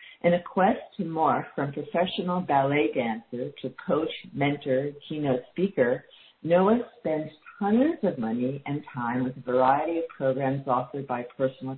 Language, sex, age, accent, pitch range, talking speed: English, female, 50-69, American, 130-160 Hz, 150 wpm